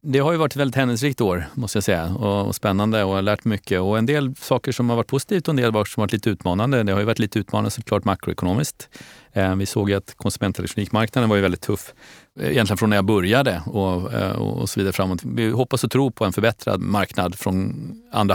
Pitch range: 100-120 Hz